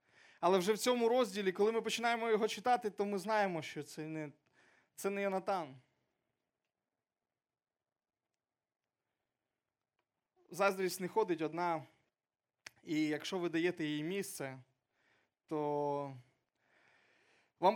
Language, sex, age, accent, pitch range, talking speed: Ukrainian, male, 20-39, native, 170-220 Hz, 100 wpm